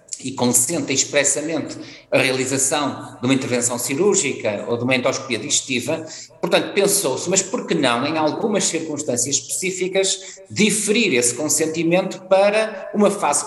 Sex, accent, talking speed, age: male, Portuguese, 135 wpm, 50-69